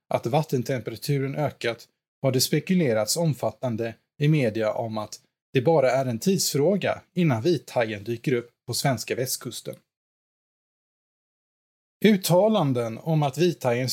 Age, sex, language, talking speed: 20-39, male, Swedish, 115 wpm